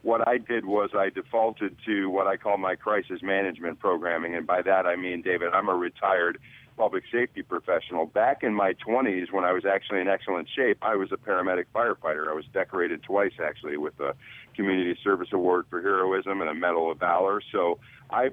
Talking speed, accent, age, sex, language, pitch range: 200 wpm, American, 50-69, male, English, 95-120 Hz